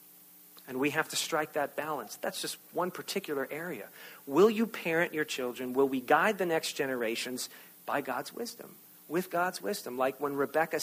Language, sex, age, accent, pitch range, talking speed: English, male, 40-59, American, 105-155 Hz, 175 wpm